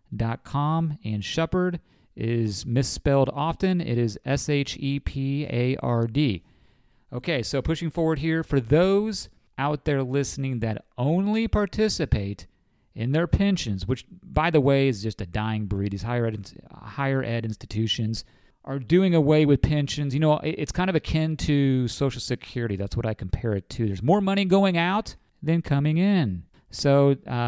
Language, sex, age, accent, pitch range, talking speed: English, male, 40-59, American, 110-155 Hz, 155 wpm